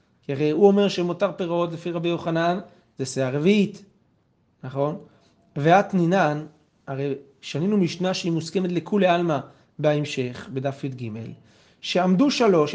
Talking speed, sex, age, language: 120 wpm, male, 30-49, Hebrew